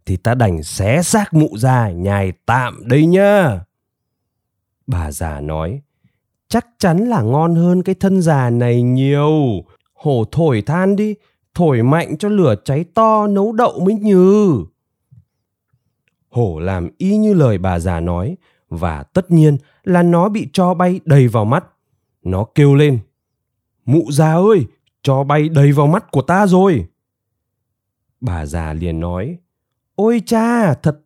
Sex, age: male, 20-39